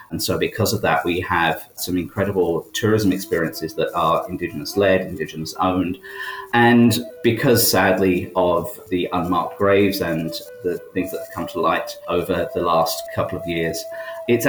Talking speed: 155 wpm